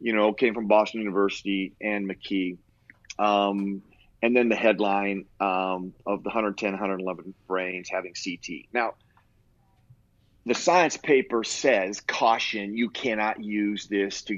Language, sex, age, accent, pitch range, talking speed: English, male, 40-59, American, 100-120 Hz, 135 wpm